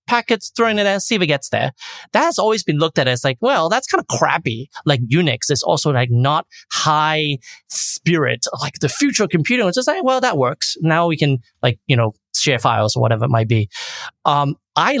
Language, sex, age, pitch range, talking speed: English, male, 30-49, 120-165 Hz, 220 wpm